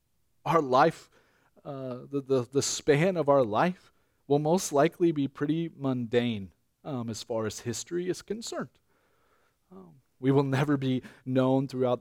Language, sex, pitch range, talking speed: English, male, 120-145 Hz, 150 wpm